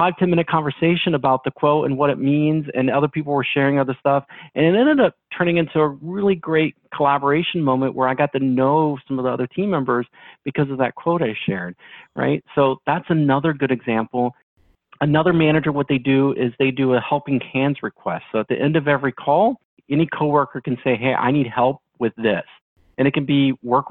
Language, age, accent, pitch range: English, 40-59, American, 115-150 Hz